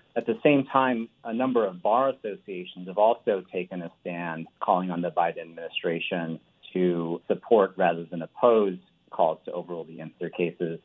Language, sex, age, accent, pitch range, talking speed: English, male, 40-59, American, 85-105 Hz, 165 wpm